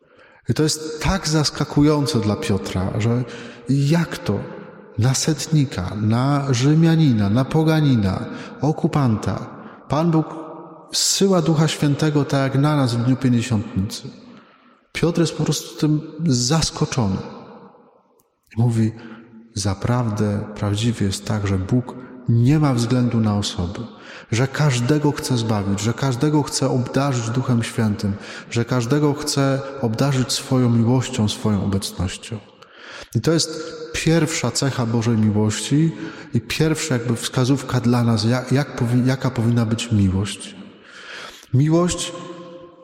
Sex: male